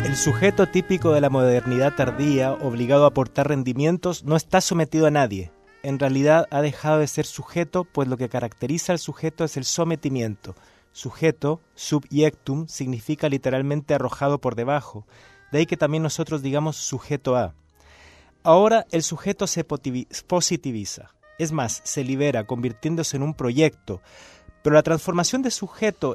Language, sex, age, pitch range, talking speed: Spanish, male, 30-49, 130-170 Hz, 150 wpm